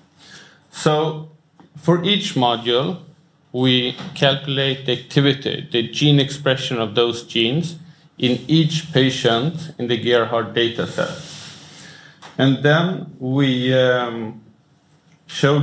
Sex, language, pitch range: male, English, 120-155 Hz